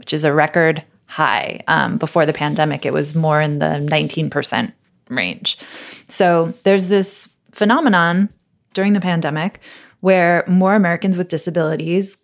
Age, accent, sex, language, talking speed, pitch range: 20-39, American, female, English, 135 wpm, 155-190 Hz